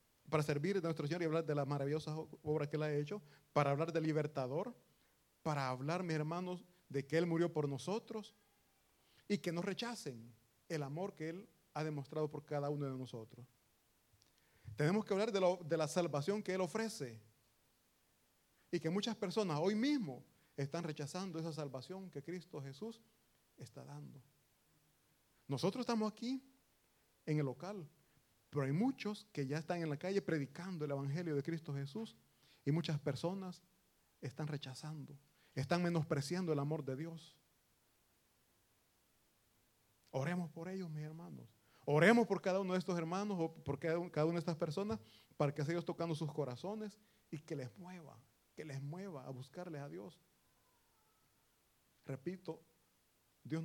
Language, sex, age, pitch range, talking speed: Italian, male, 40-59, 140-180 Hz, 155 wpm